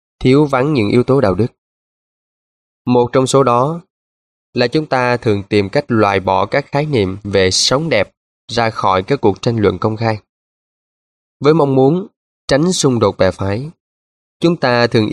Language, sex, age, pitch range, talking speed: Vietnamese, male, 20-39, 95-135 Hz, 175 wpm